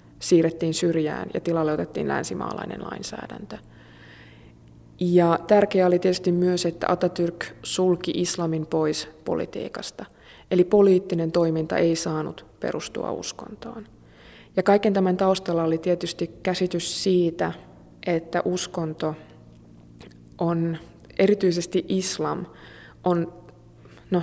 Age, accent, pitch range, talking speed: 20-39, native, 165-180 Hz, 100 wpm